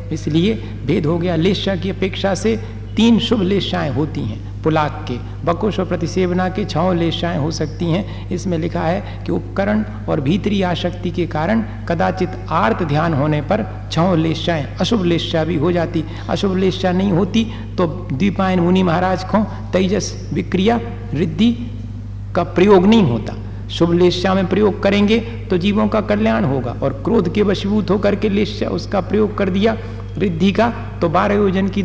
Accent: native